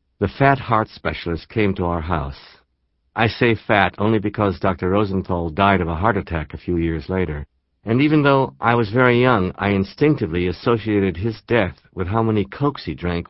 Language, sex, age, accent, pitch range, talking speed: English, male, 60-79, American, 85-115 Hz, 190 wpm